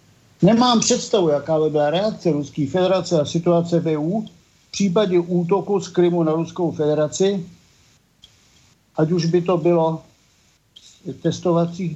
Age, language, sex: 60-79, Czech, male